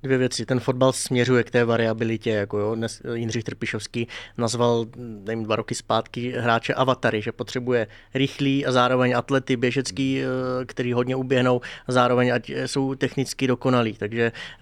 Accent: native